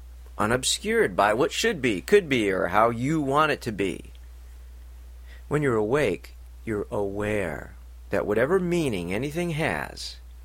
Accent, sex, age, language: American, male, 50-69, English